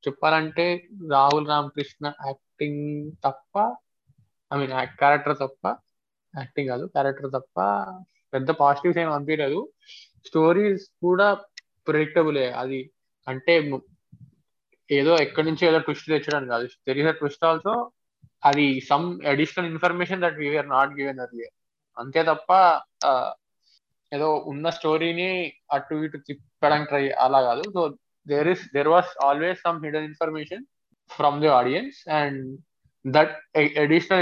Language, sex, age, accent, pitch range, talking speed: Telugu, male, 20-39, native, 140-170 Hz, 115 wpm